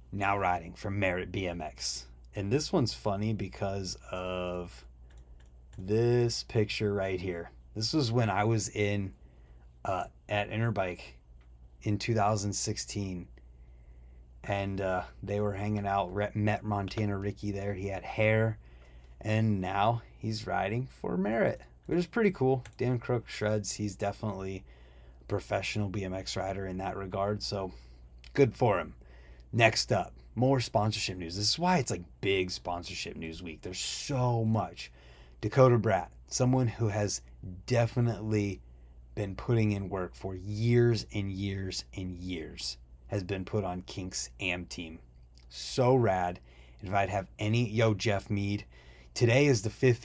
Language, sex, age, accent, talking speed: English, male, 30-49, American, 140 wpm